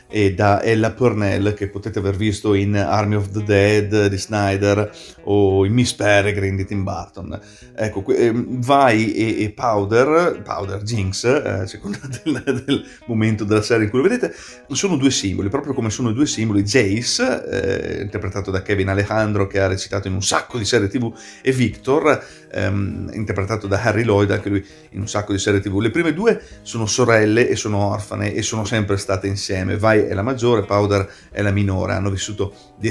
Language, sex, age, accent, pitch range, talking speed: Italian, male, 40-59, native, 100-110 Hz, 190 wpm